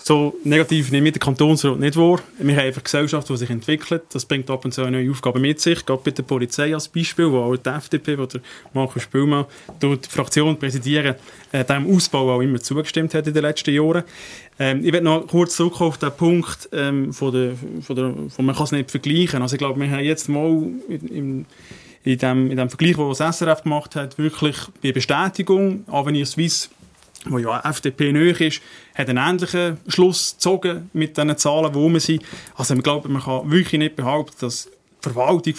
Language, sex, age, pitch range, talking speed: German, male, 30-49, 135-160 Hz, 200 wpm